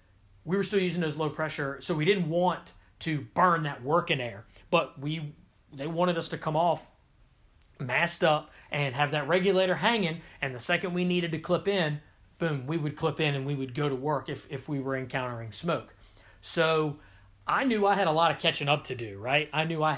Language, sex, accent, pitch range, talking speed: English, male, American, 130-175 Hz, 215 wpm